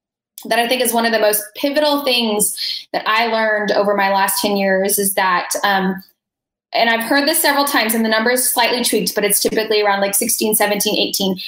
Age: 10-29